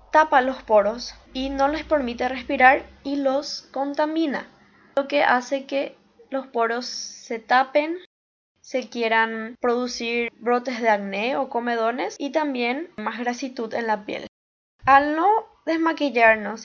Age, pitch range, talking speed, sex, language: 10-29, 230-285 Hz, 135 wpm, female, Spanish